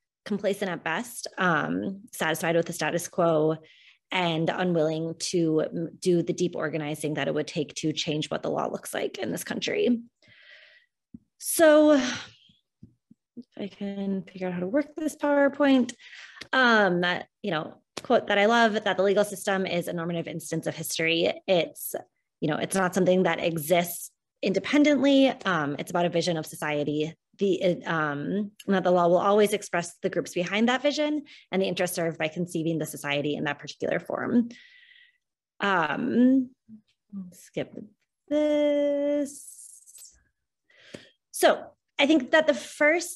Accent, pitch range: American, 165-255 Hz